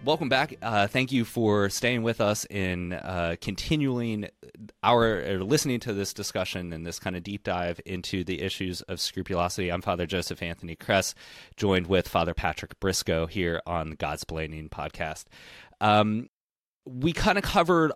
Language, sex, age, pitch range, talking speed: English, male, 30-49, 85-105 Hz, 165 wpm